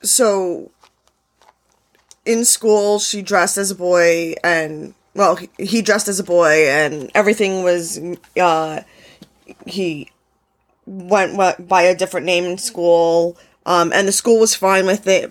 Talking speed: 145 wpm